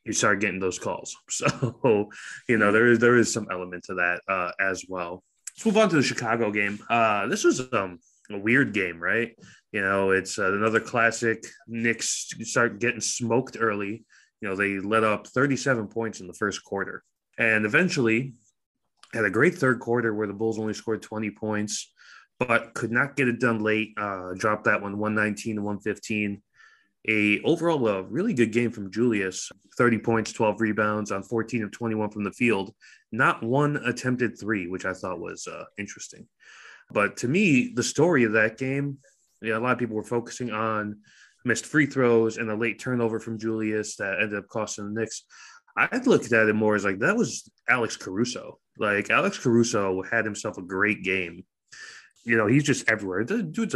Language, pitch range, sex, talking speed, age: English, 100-120 Hz, male, 190 wpm, 20-39